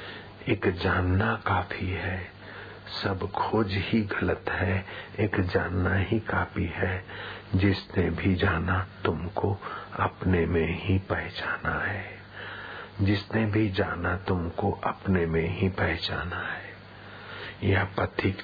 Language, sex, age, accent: Hindi, male, 50-69, native